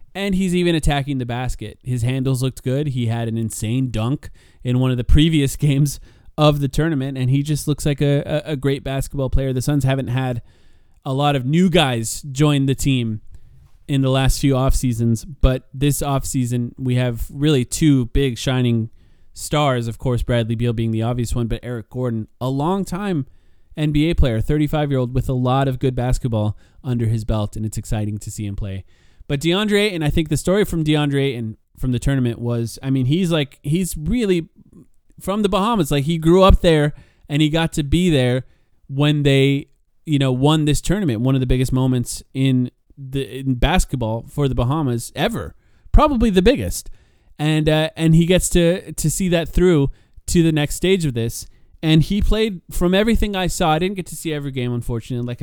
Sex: male